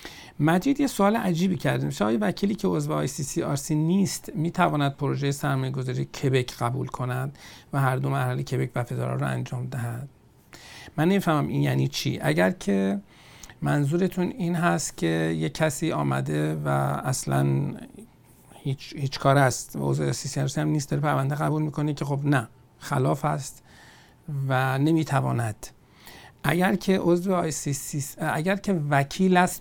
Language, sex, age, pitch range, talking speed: Persian, male, 50-69, 130-160 Hz, 165 wpm